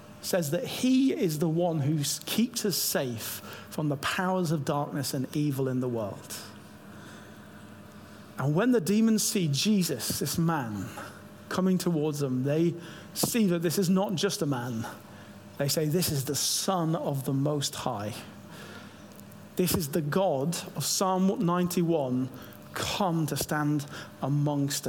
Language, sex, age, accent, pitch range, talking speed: English, male, 40-59, British, 130-205 Hz, 145 wpm